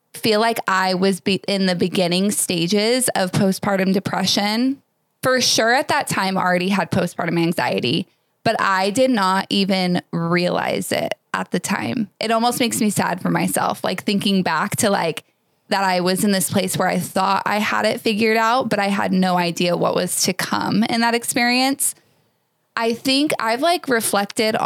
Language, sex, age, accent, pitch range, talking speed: English, female, 20-39, American, 185-220 Hz, 180 wpm